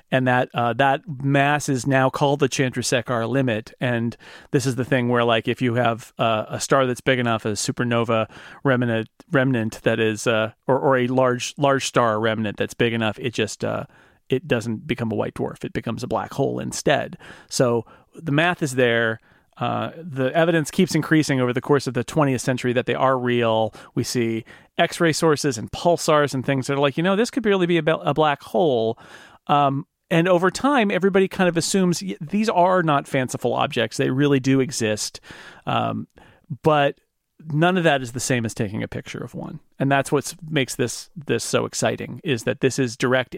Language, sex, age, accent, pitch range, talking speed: English, male, 40-59, American, 120-150 Hz, 200 wpm